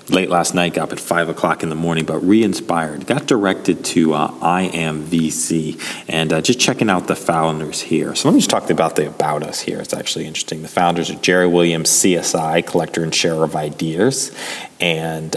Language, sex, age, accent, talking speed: English, male, 30-49, American, 200 wpm